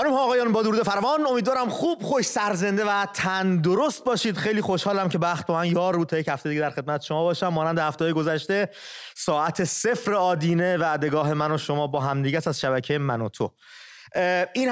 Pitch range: 140-185 Hz